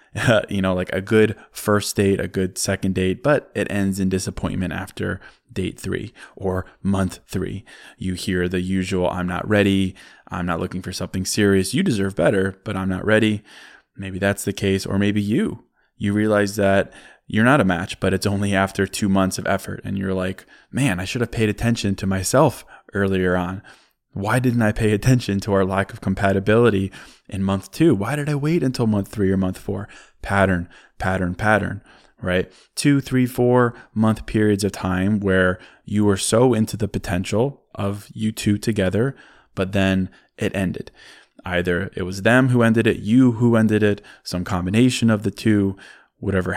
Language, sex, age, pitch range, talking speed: English, male, 20-39, 95-110 Hz, 185 wpm